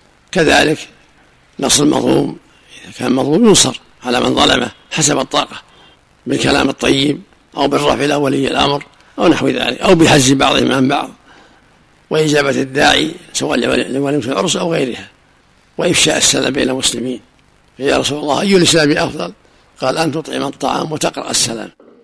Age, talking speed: 60-79, 135 wpm